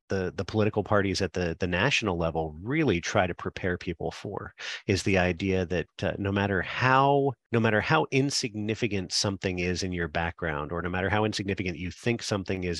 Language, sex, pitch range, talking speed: English, male, 90-110 Hz, 190 wpm